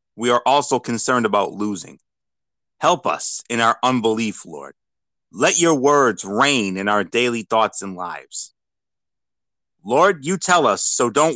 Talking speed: 150 wpm